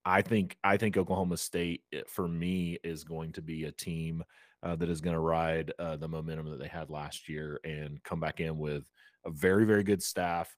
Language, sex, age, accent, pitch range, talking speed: English, male, 30-49, American, 80-95 Hz, 215 wpm